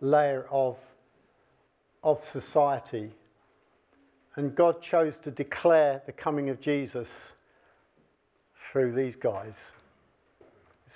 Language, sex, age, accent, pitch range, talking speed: English, male, 50-69, British, 130-160 Hz, 95 wpm